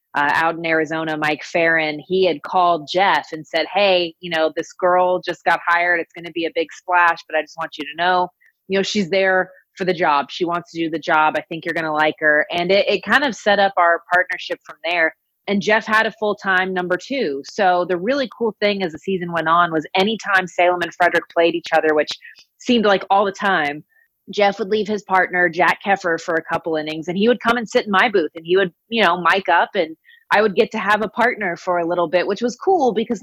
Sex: female